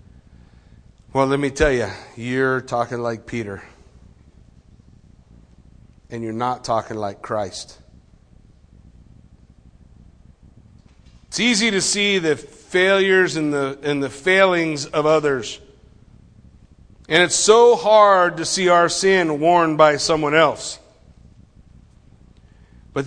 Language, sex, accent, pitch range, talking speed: English, male, American, 155-210 Hz, 105 wpm